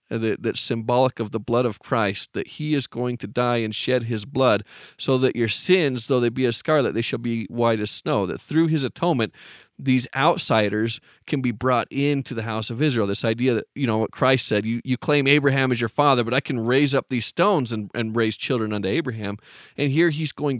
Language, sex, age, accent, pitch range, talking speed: English, male, 40-59, American, 115-140 Hz, 220 wpm